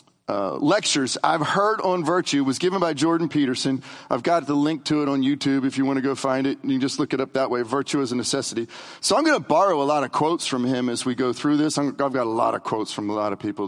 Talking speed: 290 wpm